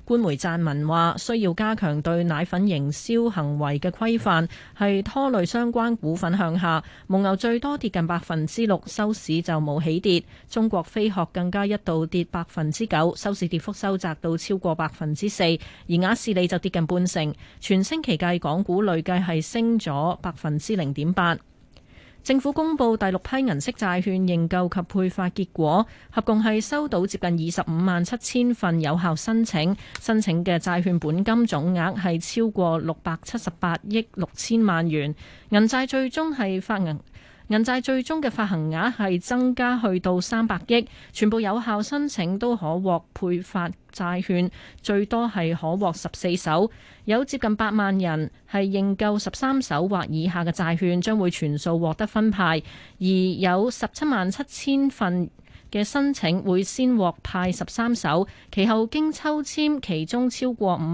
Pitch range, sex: 170-225 Hz, female